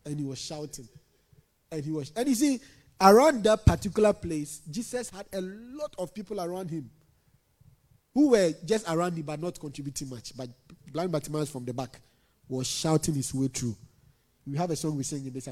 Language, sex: English, male